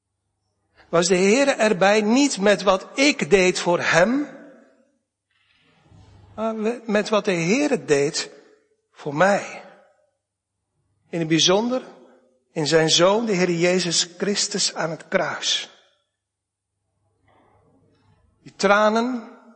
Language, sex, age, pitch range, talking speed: Dutch, male, 60-79, 155-225 Hz, 105 wpm